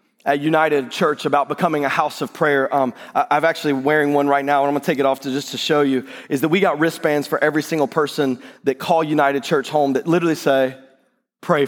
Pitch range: 165-215 Hz